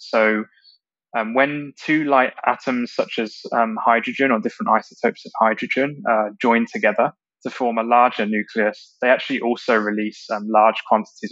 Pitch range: 110-130 Hz